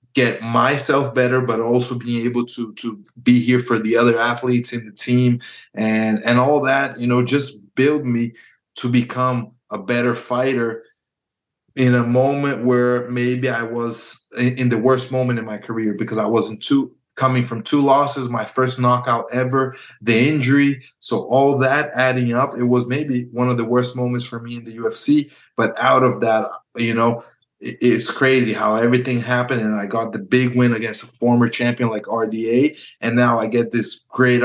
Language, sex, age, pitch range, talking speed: English, male, 20-39, 115-125 Hz, 185 wpm